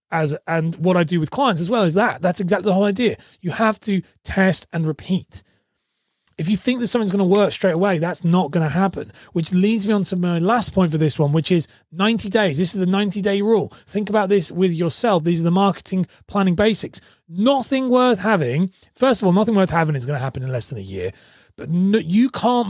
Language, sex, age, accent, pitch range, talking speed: English, male, 30-49, British, 155-205 Hz, 235 wpm